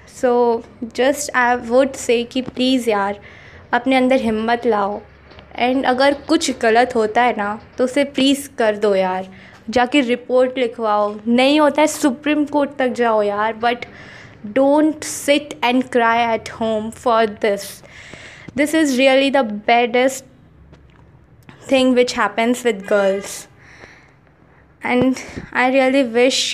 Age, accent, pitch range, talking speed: 20-39, native, 230-275 Hz, 135 wpm